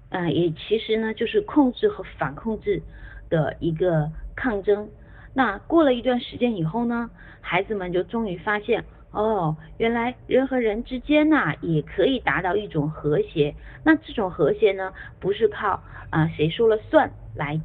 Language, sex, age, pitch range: Chinese, female, 30-49, 160-235 Hz